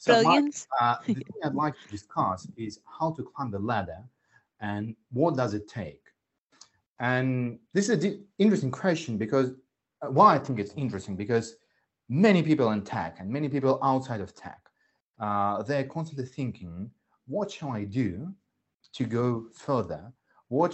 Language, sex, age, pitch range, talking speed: English, male, 30-49, 105-150 Hz, 160 wpm